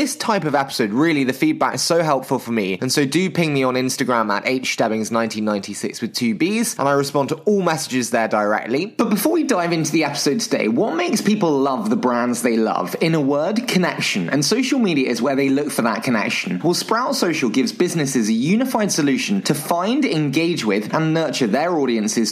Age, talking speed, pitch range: 20-39, 215 wpm, 135-195 Hz